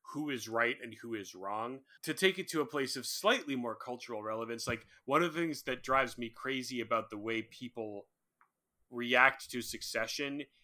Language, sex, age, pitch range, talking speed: English, male, 30-49, 120-150 Hz, 190 wpm